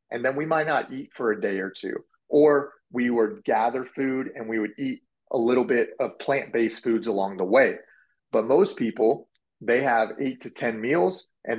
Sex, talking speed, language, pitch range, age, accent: male, 200 wpm, English, 115-140 Hz, 30-49, American